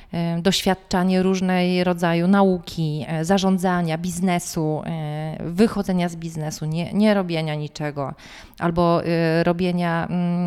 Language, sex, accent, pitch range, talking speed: Polish, female, native, 170-205 Hz, 90 wpm